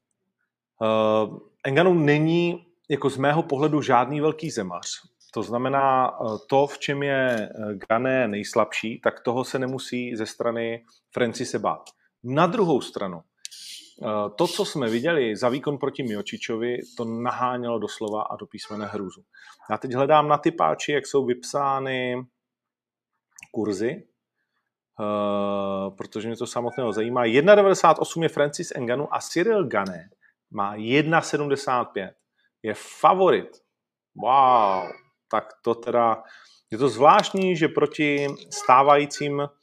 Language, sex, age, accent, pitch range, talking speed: Czech, male, 30-49, native, 110-145 Hz, 125 wpm